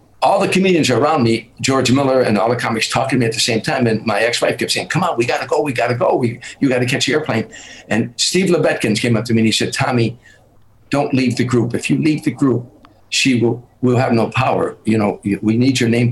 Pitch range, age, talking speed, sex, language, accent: 110-130 Hz, 60-79, 250 wpm, male, English, American